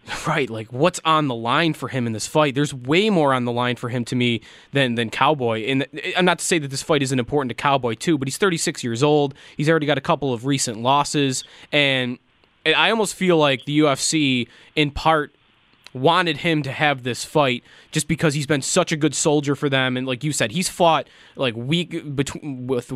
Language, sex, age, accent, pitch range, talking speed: English, male, 20-39, American, 130-170 Hz, 220 wpm